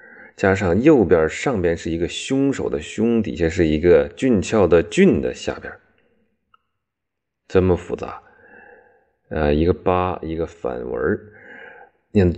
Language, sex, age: Chinese, male, 30-49